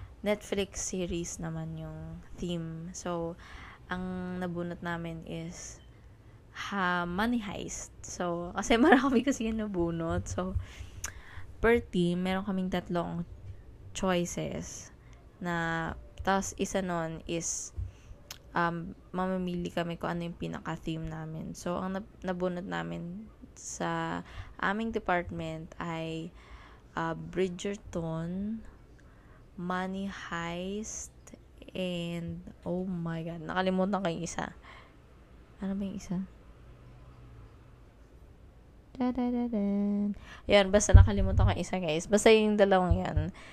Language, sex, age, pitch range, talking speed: Filipino, female, 20-39, 150-185 Hz, 100 wpm